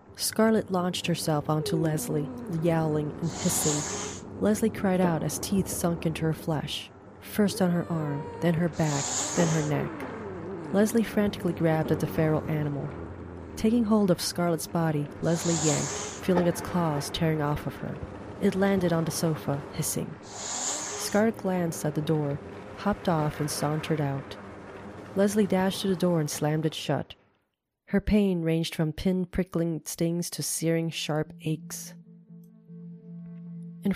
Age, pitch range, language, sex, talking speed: 30-49, 150-185 Hz, English, female, 150 wpm